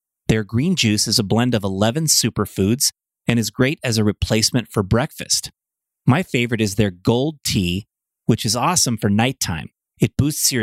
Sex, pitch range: male, 110-135 Hz